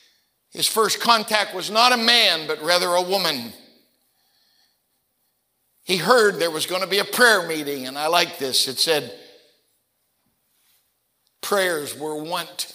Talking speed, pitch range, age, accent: 140 wpm, 150-200 Hz, 60-79, American